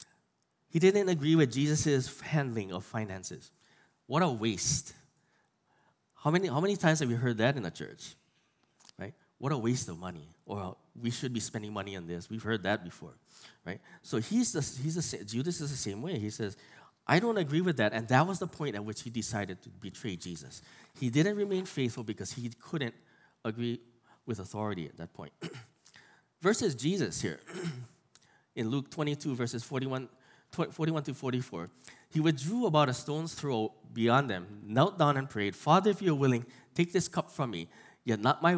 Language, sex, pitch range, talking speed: English, male, 110-160 Hz, 185 wpm